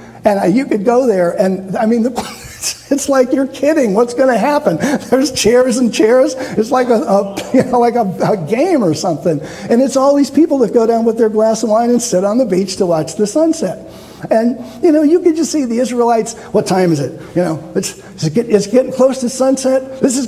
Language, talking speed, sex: English, 230 wpm, male